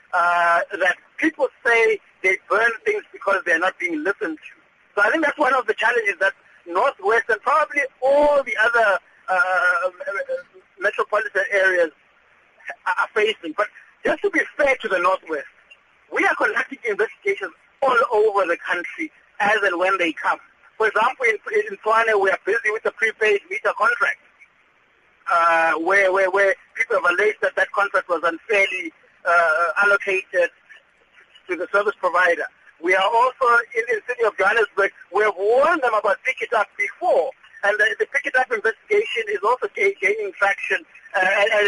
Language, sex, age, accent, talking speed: English, male, 60-79, South African, 165 wpm